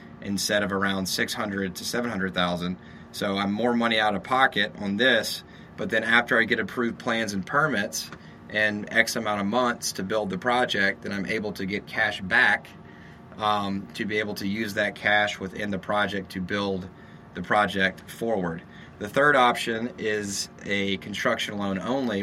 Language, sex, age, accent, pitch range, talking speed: English, male, 30-49, American, 95-110 Hz, 175 wpm